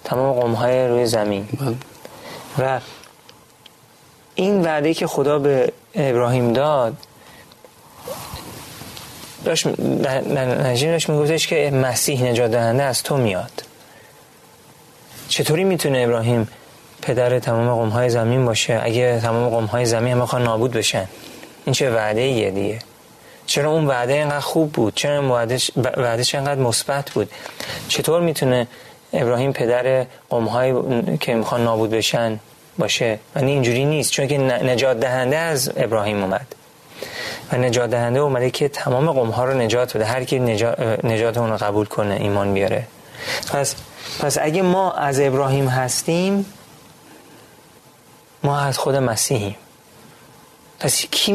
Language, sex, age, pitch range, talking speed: Persian, male, 30-49, 115-145 Hz, 125 wpm